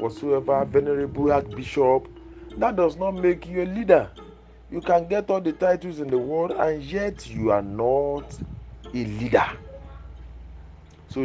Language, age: English, 40-59